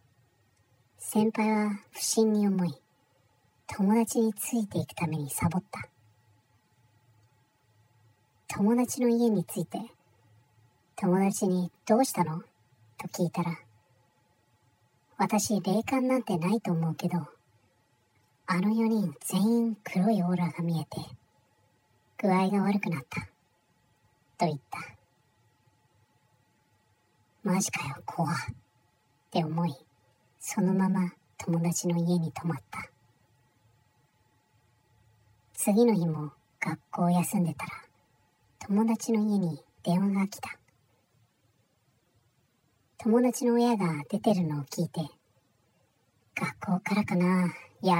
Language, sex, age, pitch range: Japanese, male, 40-59, 120-185 Hz